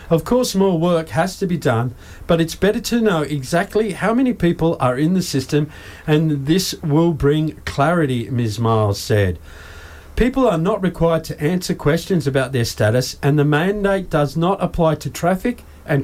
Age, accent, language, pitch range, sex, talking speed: 50-69, Australian, English, 135-180 Hz, male, 180 wpm